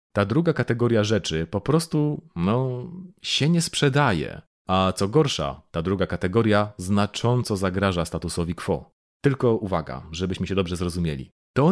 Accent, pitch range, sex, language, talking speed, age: native, 90-115 Hz, male, Polish, 140 wpm, 30-49